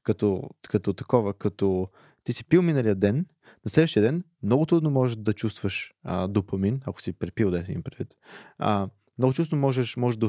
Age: 20-39